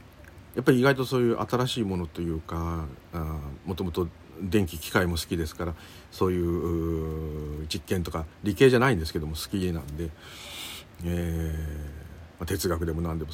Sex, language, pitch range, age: male, Japanese, 85-110 Hz, 50-69